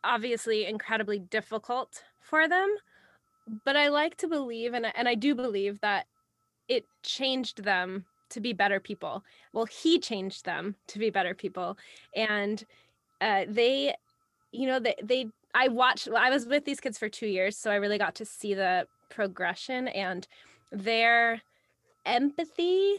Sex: female